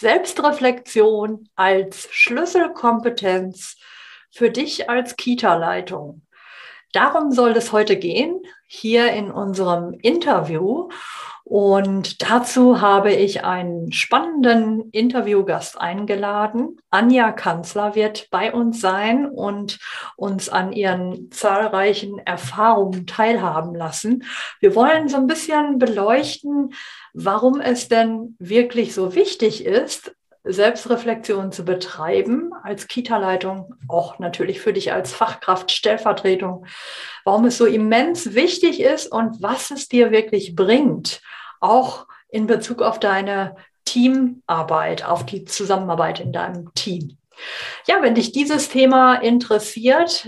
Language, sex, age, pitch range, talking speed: German, female, 50-69, 195-245 Hz, 110 wpm